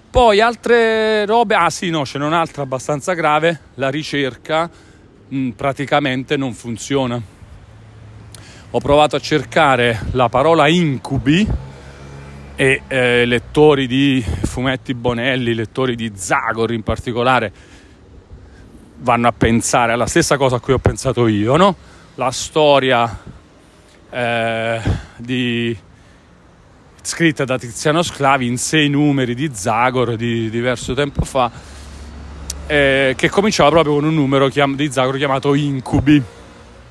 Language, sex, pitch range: Italian, male, 110-145 Hz